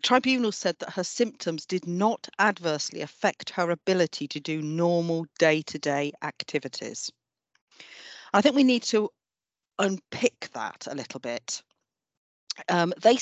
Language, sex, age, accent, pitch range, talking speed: English, female, 40-59, British, 155-200 Hz, 135 wpm